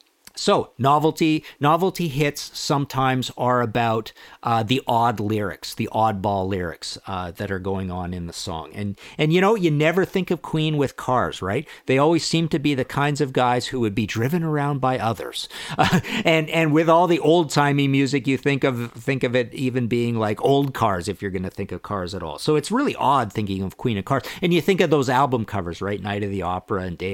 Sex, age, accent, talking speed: male, 50-69, American, 225 wpm